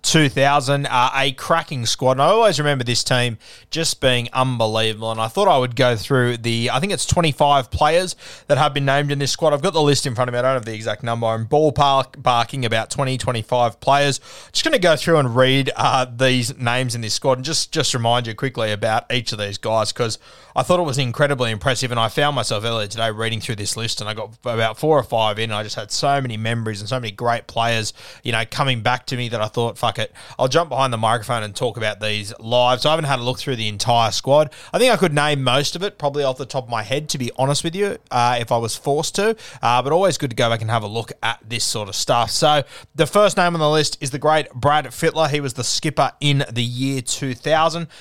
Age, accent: 20-39, Australian